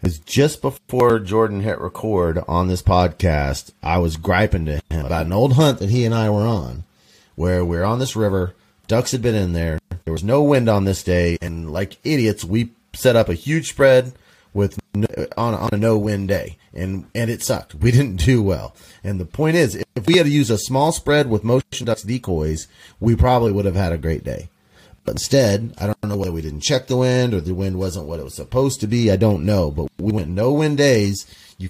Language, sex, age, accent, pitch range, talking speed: English, male, 30-49, American, 90-125 Hz, 225 wpm